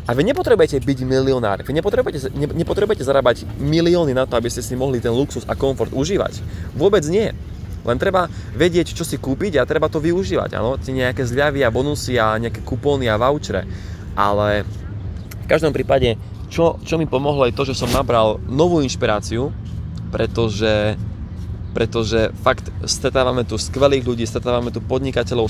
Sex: male